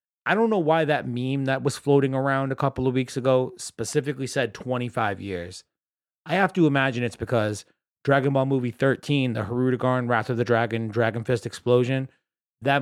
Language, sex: English, male